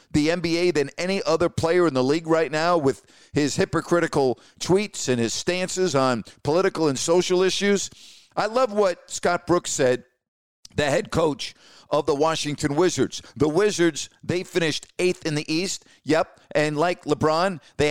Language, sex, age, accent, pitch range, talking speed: English, male, 50-69, American, 145-185 Hz, 165 wpm